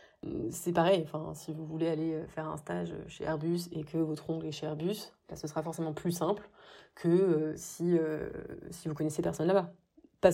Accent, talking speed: French, 205 wpm